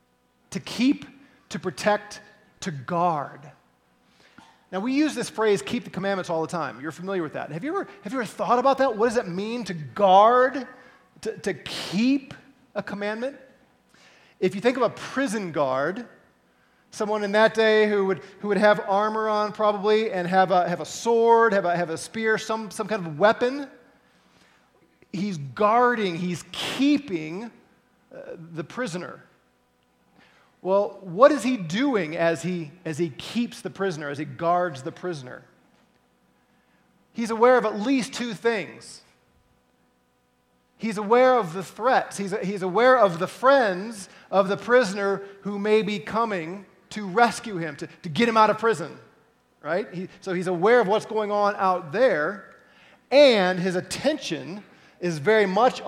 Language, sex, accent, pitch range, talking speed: English, male, American, 170-225 Hz, 160 wpm